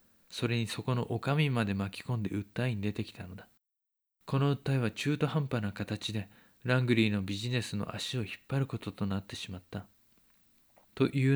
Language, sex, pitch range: Japanese, male, 105-130 Hz